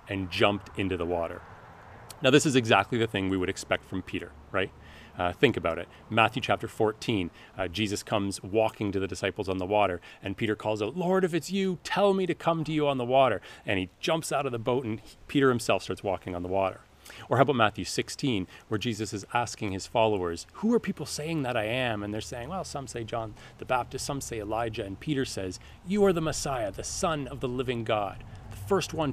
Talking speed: 230 wpm